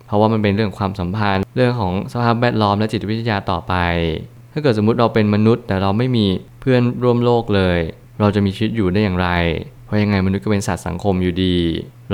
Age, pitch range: 20-39, 95-115 Hz